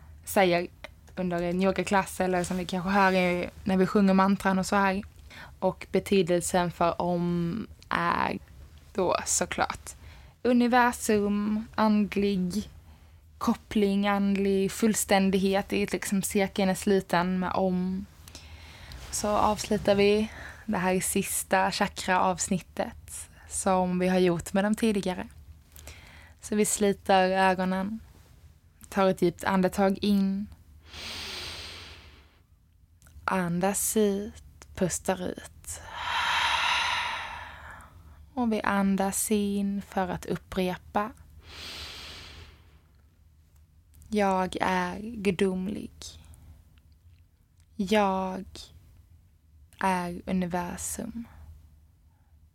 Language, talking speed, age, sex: Swedish, 90 wpm, 20-39, female